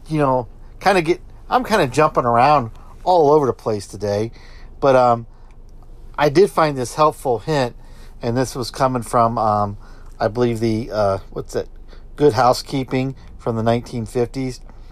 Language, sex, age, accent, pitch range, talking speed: English, male, 50-69, American, 110-145 Hz, 160 wpm